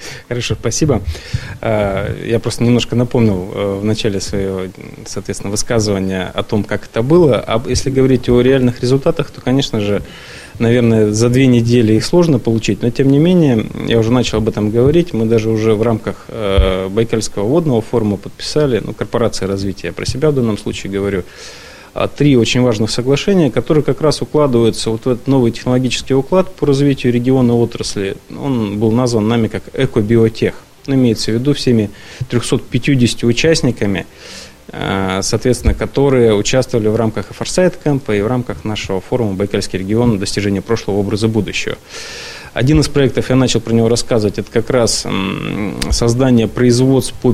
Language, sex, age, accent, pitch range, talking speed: Russian, male, 20-39, native, 105-130 Hz, 155 wpm